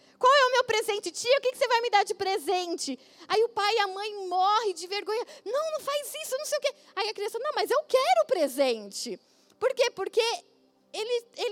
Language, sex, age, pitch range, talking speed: Portuguese, female, 10-29, 330-440 Hz, 225 wpm